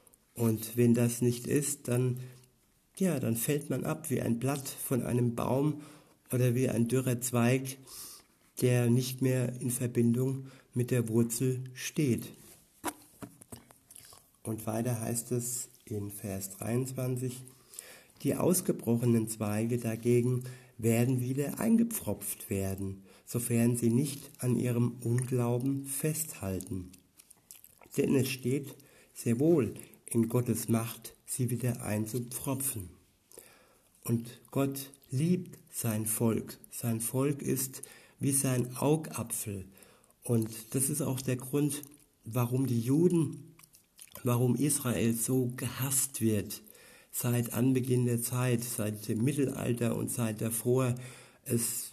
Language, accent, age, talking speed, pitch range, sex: German, German, 60-79, 115 wpm, 115-135 Hz, male